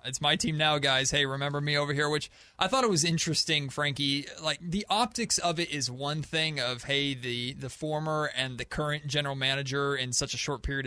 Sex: male